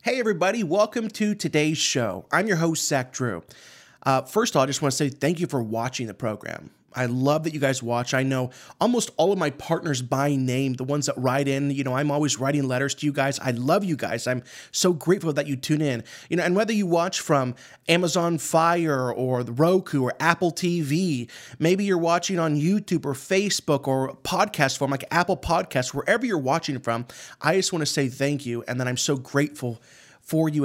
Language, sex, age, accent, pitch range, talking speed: English, male, 30-49, American, 135-175 Hz, 215 wpm